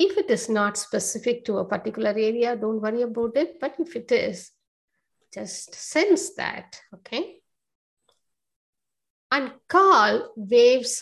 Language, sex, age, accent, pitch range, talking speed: English, female, 50-69, Indian, 205-255 Hz, 130 wpm